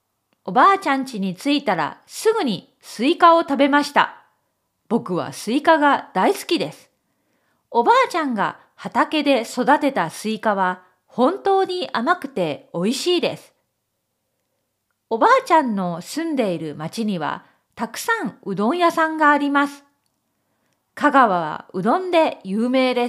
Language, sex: Japanese, female